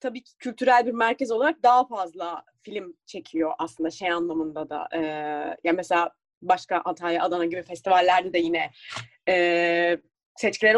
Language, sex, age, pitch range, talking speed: Turkish, female, 30-49, 180-245 Hz, 150 wpm